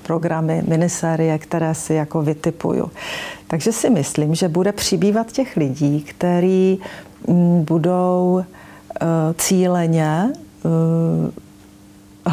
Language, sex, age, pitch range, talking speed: Czech, female, 40-59, 165-190 Hz, 95 wpm